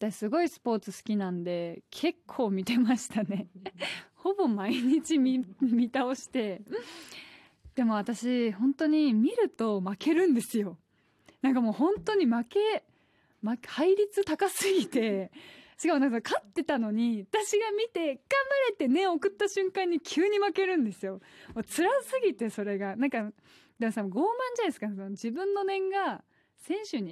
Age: 20-39